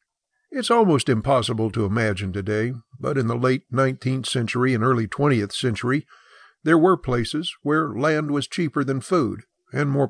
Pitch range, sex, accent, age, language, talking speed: 120-155 Hz, male, American, 50-69, English, 160 wpm